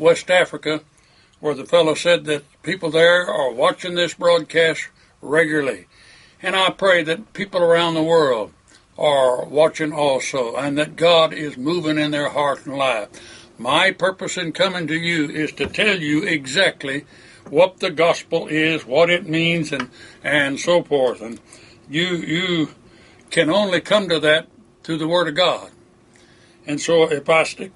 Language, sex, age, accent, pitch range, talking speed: English, male, 60-79, American, 150-170 Hz, 160 wpm